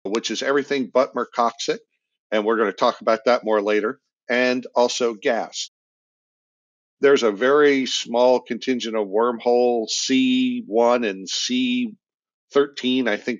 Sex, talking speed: male, 130 wpm